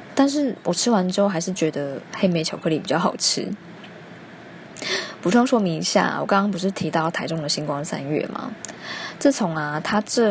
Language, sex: Chinese, female